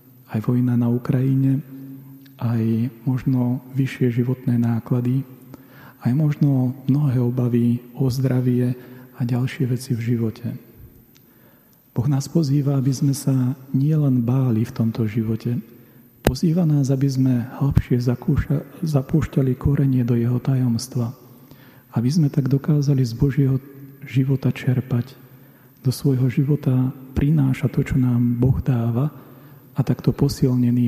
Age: 40-59